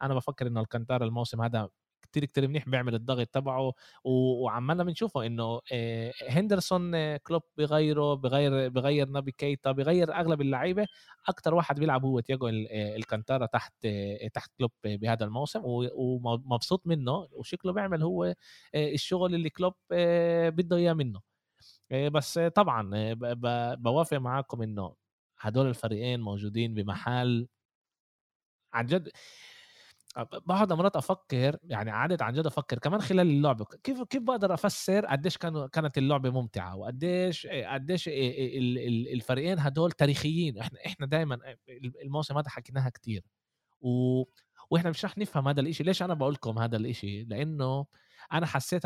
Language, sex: Arabic, male